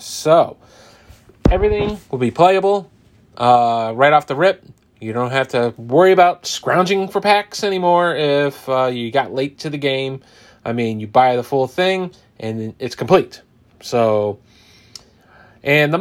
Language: English